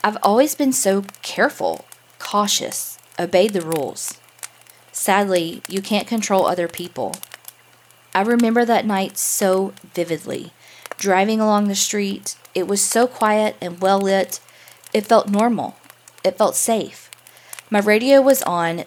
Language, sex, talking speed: English, female, 130 wpm